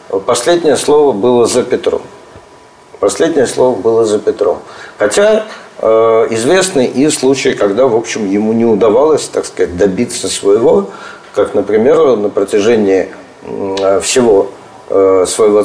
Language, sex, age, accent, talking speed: Russian, male, 50-69, native, 100 wpm